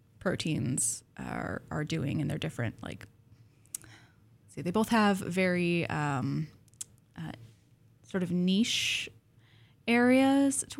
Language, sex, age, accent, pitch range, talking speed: English, female, 10-29, American, 120-180 Hz, 110 wpm